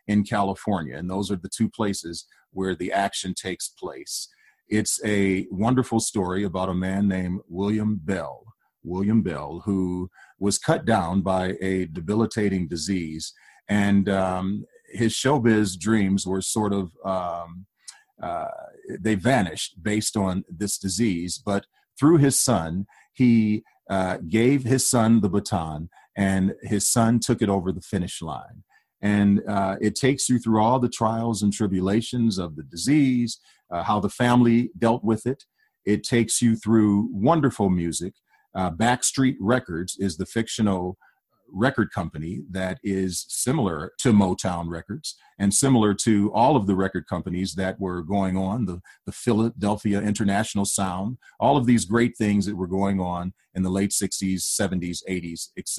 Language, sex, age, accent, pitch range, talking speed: English, male, 40-59, American, 95-110 Hz, 155 wpm